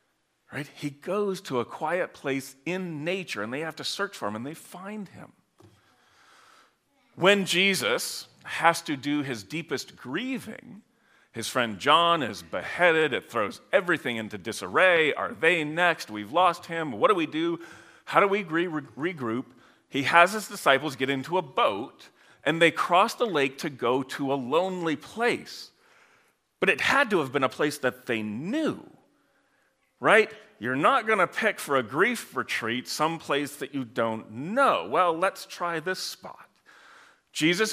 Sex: male